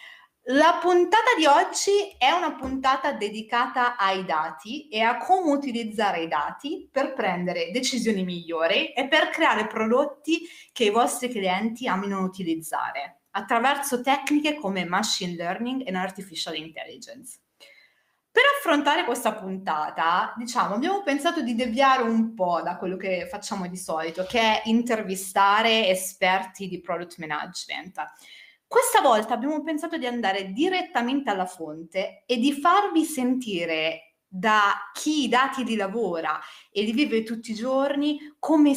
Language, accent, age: Italian, native, 30-49